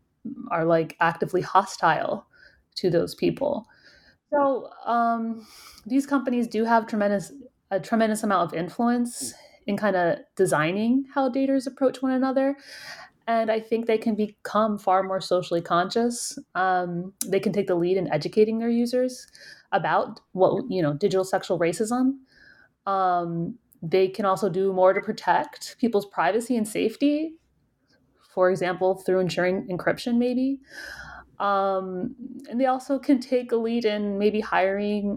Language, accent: English, American